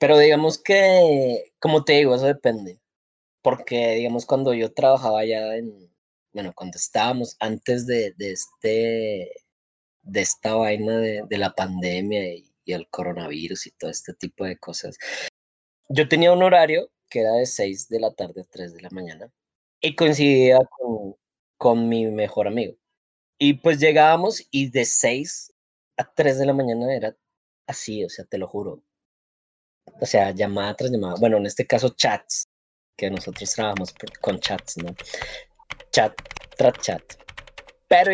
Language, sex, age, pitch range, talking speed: Spanish, male, 20-39, 110-160 Hz, 155 wpm